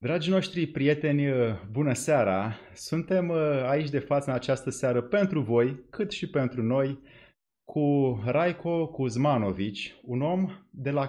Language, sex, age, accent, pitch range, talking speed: Romanian, male, 30-49, native, 130-160 Hz, 135 wpm